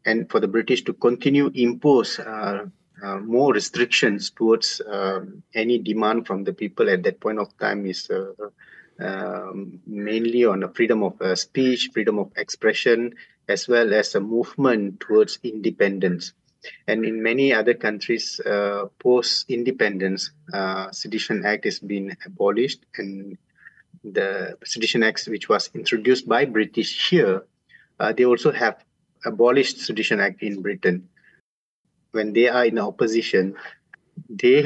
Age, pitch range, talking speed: 30-49, 100-140 Hz, 140 wpm